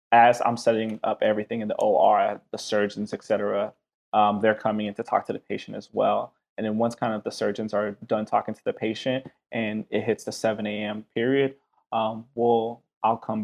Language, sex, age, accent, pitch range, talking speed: English, male, 20-39, American, 110-120 Hz, 210 wpm